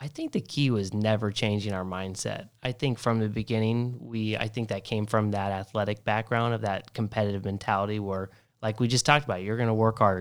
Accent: American